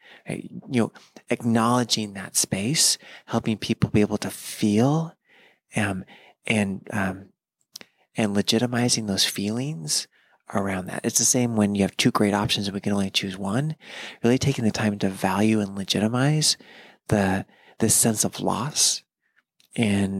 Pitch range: 100-120 Hz